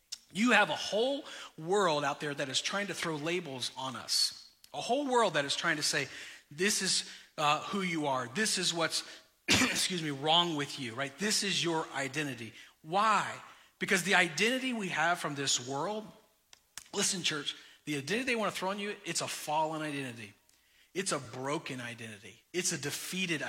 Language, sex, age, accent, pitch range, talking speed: English, male, 40-59, American, 140-185 Hz, 180 wpm